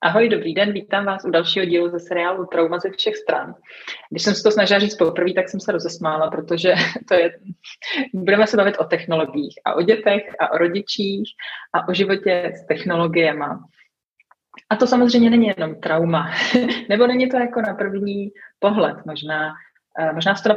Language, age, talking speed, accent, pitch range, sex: Czech, 30-49, 180 wpm, native, 160-195 Hz, female